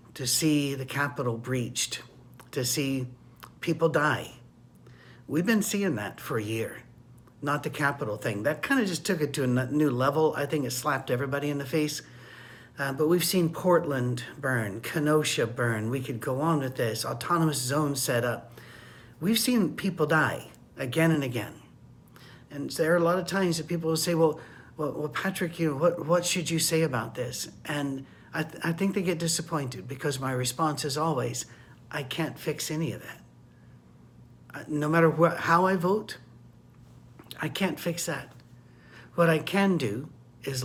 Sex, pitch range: male, 130-165 Hz